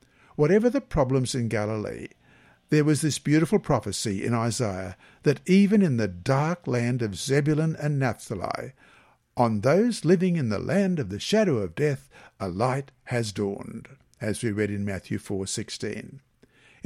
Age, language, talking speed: 60-79, English, 155 wpm